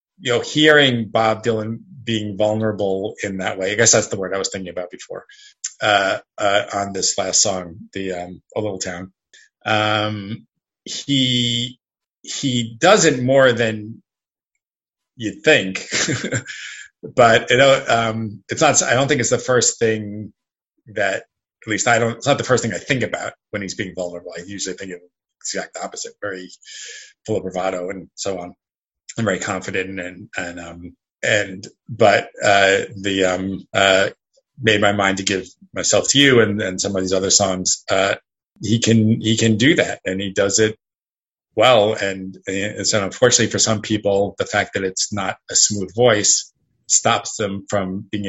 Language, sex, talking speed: English, male, 180 wpm